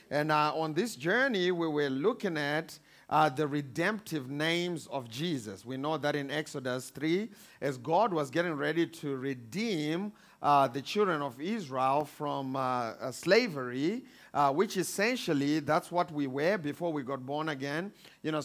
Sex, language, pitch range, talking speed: male, English, 145-185 Hz, 165 wpm